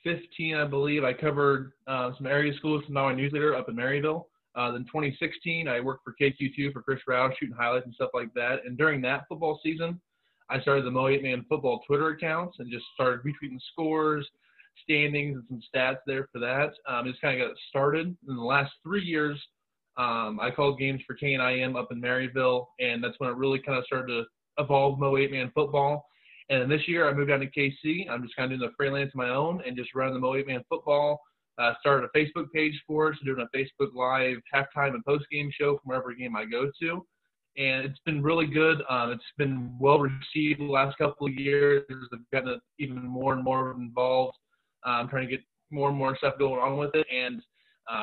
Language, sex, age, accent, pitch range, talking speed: English, male, 20-39, American, 130-150 Hz, 220 wpm